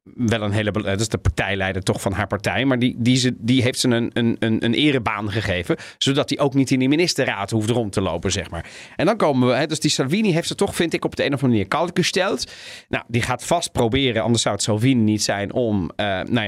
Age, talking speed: 40-59, 255 wpm